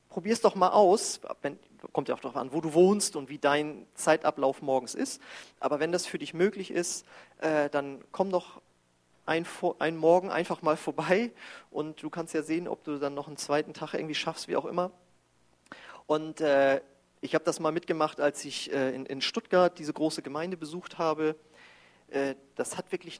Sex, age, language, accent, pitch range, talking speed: male, 40-59, German, German, 140-180 Hz, 190 wpm